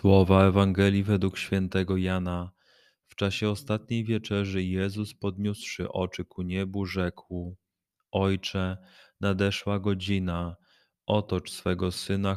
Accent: native